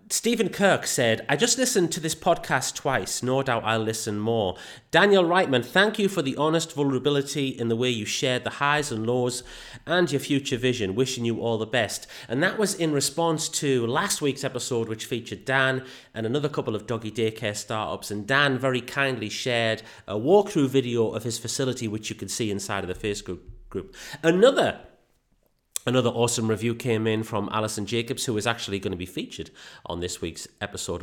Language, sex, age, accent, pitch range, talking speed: English, male, 30-49, British, 110-145 Hz, 195 wpm